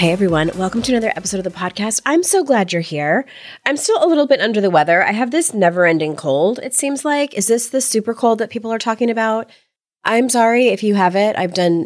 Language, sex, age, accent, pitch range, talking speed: English, female, 30-49, American, 165-240 Hz, 245 wpm